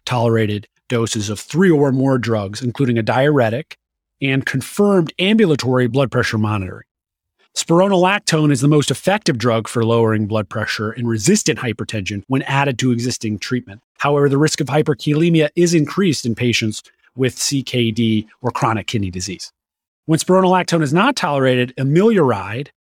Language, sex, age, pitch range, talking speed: English, male, 30-49, 115-155 Hz, 145 wpm